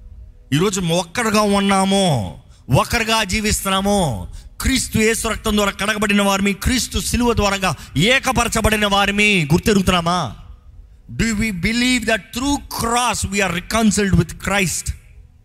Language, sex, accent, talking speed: Telugu, male, native, 110 wpm